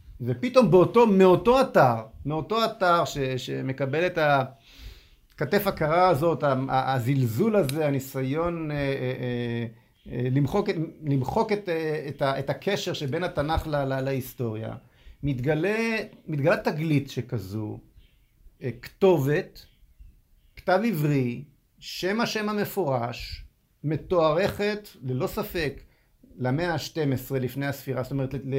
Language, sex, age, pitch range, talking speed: Hebrew, male, 50-69, 125-180 Hz, 95 wpm